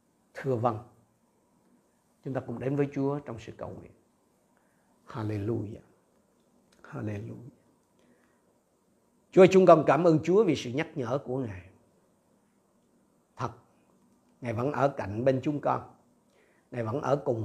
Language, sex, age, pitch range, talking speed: Vietnamese, male, 50-69, 120-155 Hz, 130 wpm